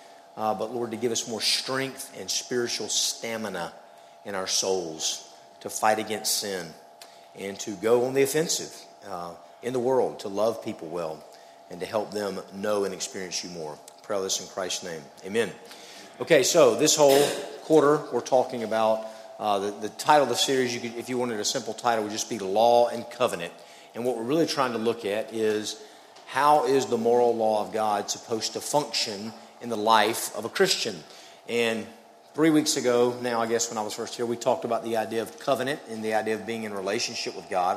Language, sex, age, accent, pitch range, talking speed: English, male, 40-59, American, 105-125 Hz, 200 wpm